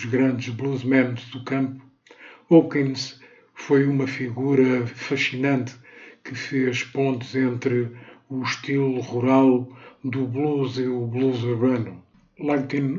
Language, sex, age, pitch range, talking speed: Portuguese, male, 50-69, 120-135 Hz, 110 wpm